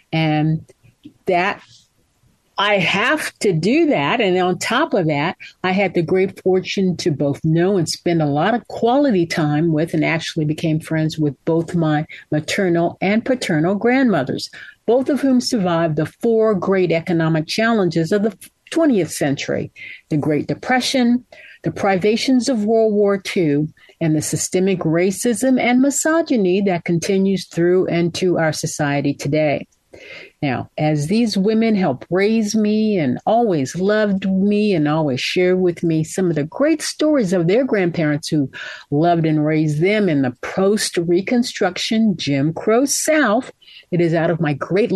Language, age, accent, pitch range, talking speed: English, 50-69, American, 160-220 Hz, 155 wpm